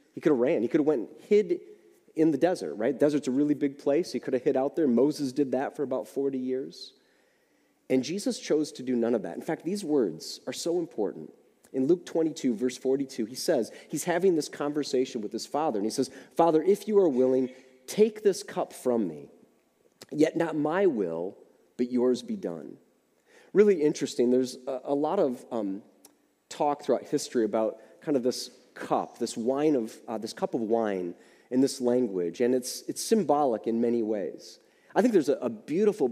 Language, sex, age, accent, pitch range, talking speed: English, male, 30-49, American, 120-160 Hz, 200 wpm